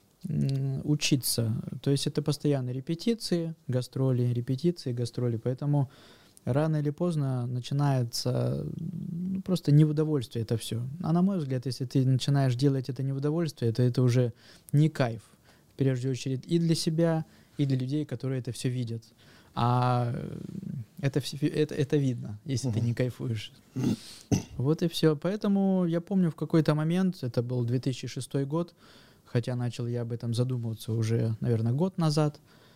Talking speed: 150 wpm